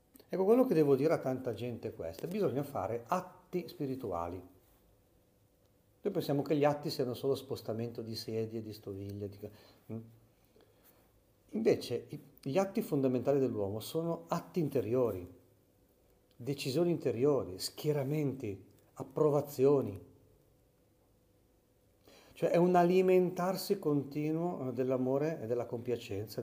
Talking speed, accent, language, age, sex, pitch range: 105 wpm, native, Italian, 50-69, male, 110-150 Hz